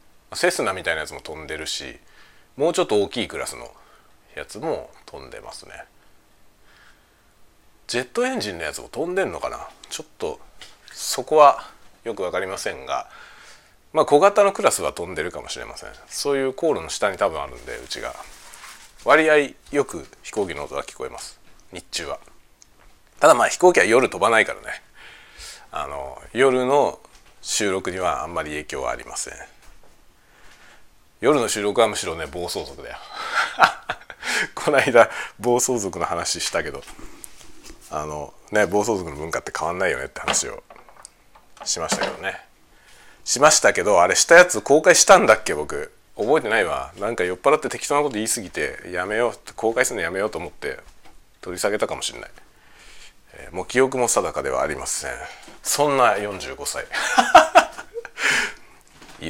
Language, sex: Japanese, male